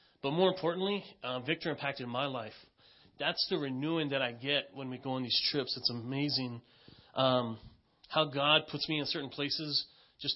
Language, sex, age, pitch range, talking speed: English, male, 30-49, 135-160 Hz, 180 wpm